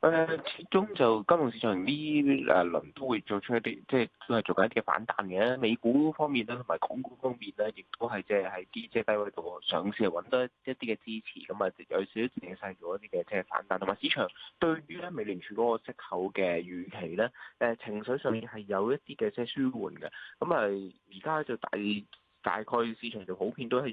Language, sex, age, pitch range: Chinese, male, 20-39, 100-140 Hz